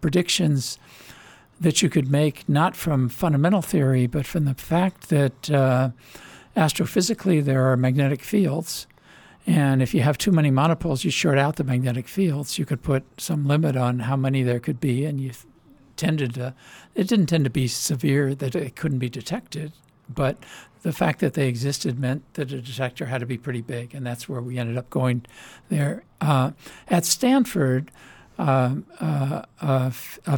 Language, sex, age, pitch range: English, male, 60-79, 130-160 Hz